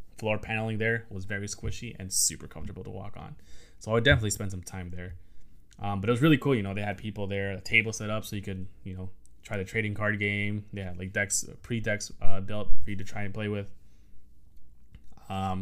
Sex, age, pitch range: male, 20-39, 95-105 Hz